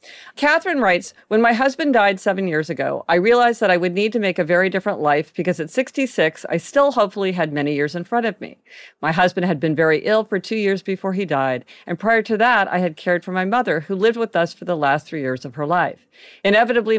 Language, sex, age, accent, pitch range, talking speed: English, female, 50-69, American, 160-215 Hz, 245 wpm